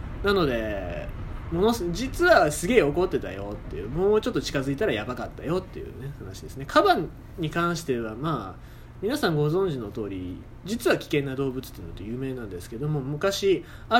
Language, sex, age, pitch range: Japanese, male, 20-39, 115-190 Hz